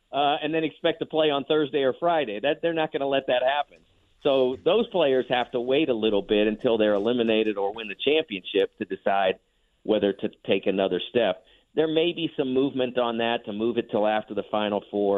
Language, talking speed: English, 220 wpm